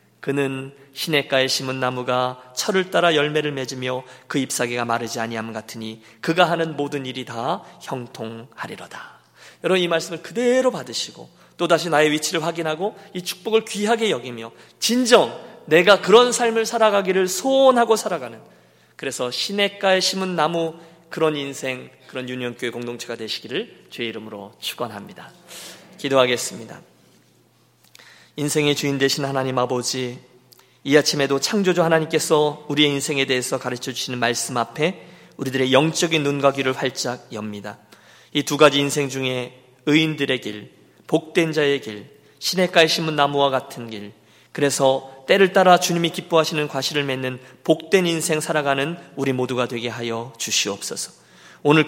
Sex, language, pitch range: male, Korean, 125-165 Hz